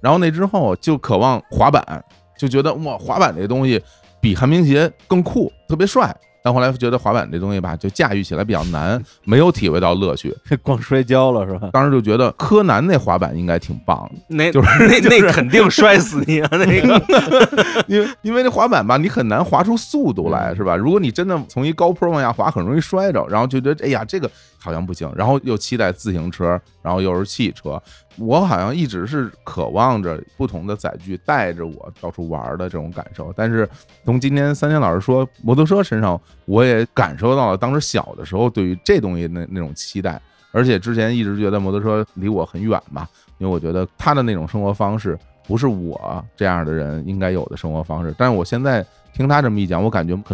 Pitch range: 90-135 Hz